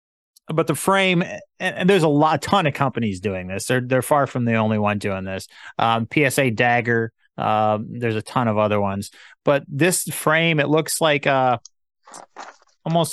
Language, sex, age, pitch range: English, male, 30-49, 125-165 Hz